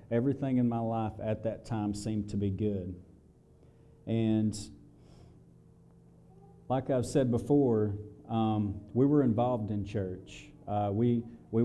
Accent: American